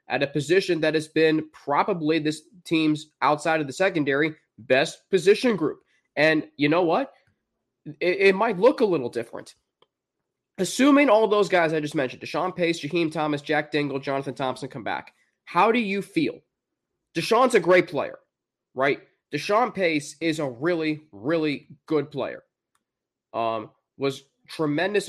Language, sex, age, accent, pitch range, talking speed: English, male, 20-39, American, 135-180 Hz, 155 wpm